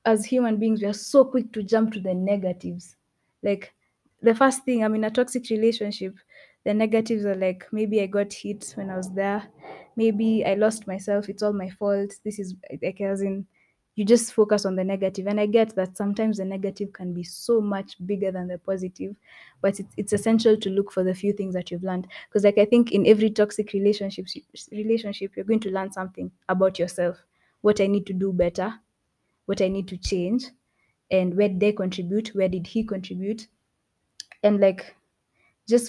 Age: 20-39